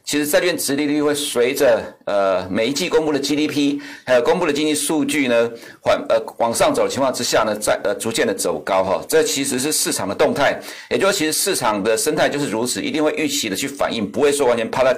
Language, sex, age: Chinese, male, 60-79